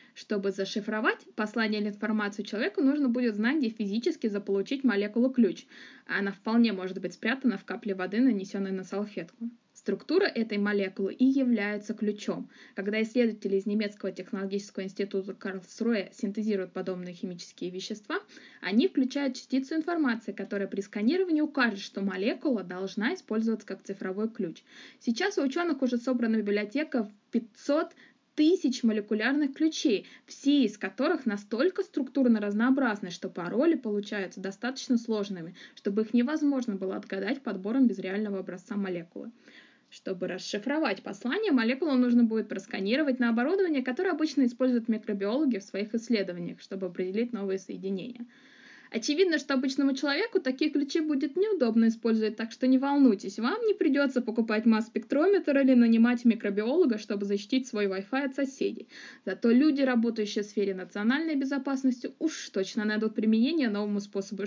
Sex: female